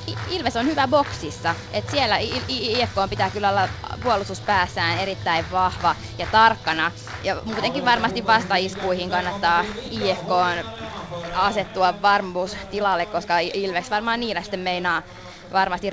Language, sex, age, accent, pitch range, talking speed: Finnish, female, 20-39, native, 180-225 Hz, 130 wpm